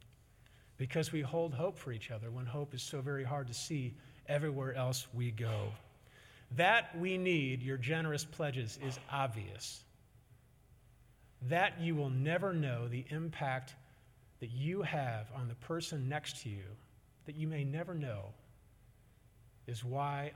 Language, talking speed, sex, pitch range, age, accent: English, 145 wpm, male, 115-135 Hz, 40-59, American